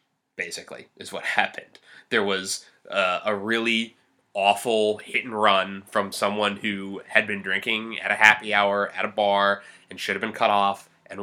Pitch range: 95-110 Hz